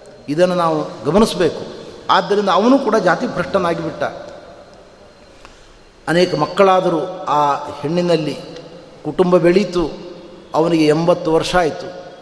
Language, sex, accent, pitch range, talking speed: Kannada, male, native, 175-230 Hz, 95 wpm